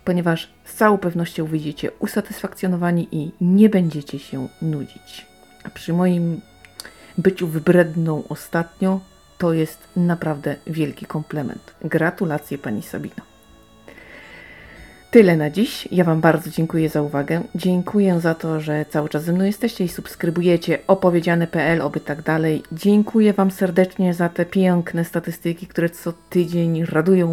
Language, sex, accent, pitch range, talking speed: Polish, female, native, 155-185 Hz, 130 wpm